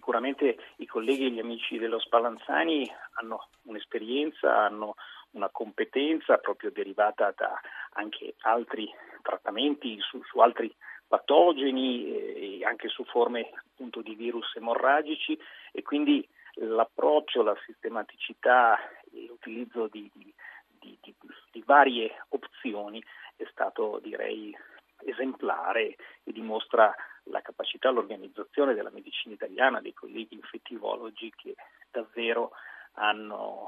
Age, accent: 40-59, native